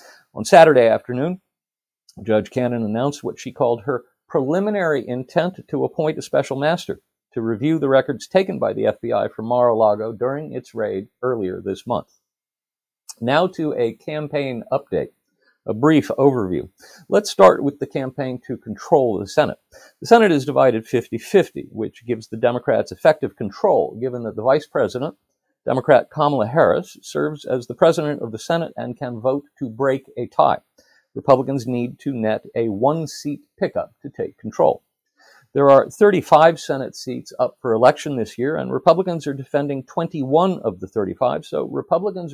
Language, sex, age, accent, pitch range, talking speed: English, male, 50-69, American, 125-155 Hz, 160 wpm